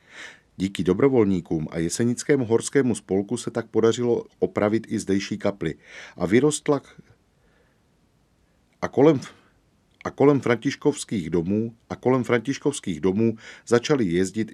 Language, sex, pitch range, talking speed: Czech, male, 90-115 Hz, 105 wpm